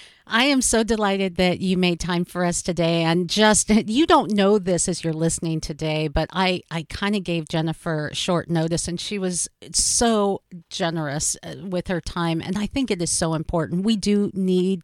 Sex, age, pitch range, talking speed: female, 50-69, 170-210 Hz, 195 wpm